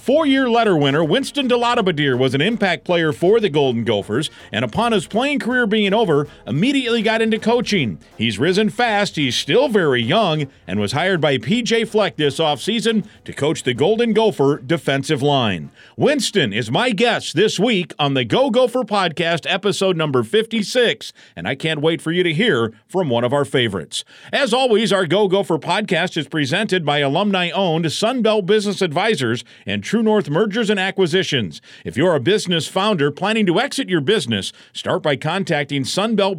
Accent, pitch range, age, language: American, 140-215 Hz, 50-69, English